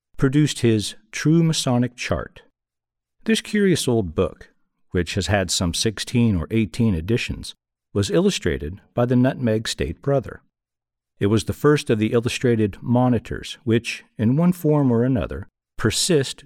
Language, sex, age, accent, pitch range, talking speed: English, male, 50-69, American, 90-120 Hz, 140 wpm